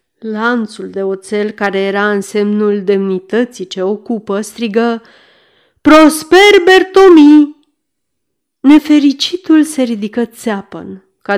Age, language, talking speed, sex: 30-49, Romanian, 95 wpm, female